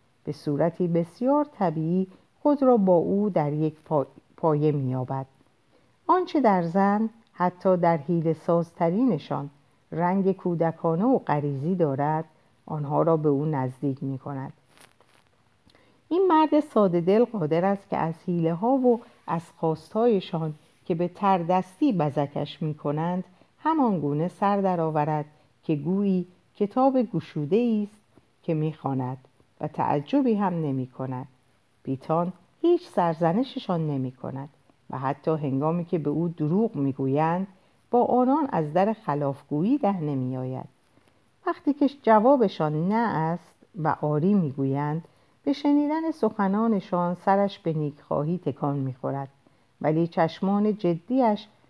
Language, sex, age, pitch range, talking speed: Persian, female, 50-69, 145-205 Hz, 125 wpm